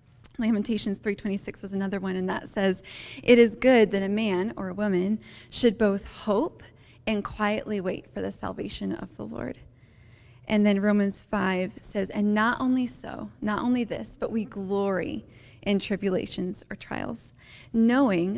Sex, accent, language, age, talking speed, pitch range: female, American, English, 20-39, 160 wpm, 185-215 Hz